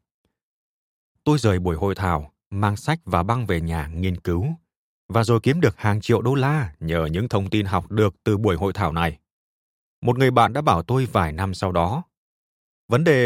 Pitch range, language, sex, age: 95-130 Hz, Vietnamese, male, 20-39